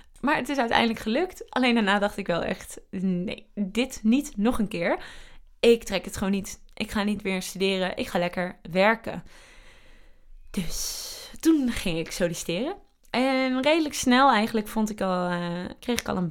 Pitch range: 190-235 Hz